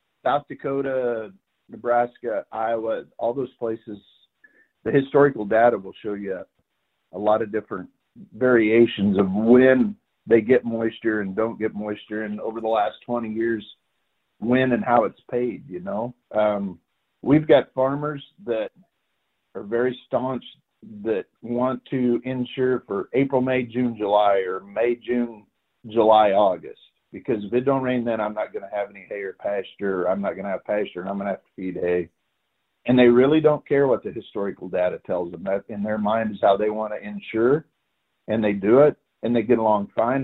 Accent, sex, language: American, male, English